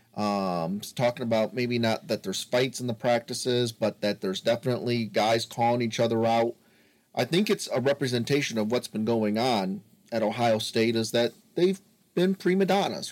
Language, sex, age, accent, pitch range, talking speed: English, male, 40-59, American, 110-130 Hz, 180 wpm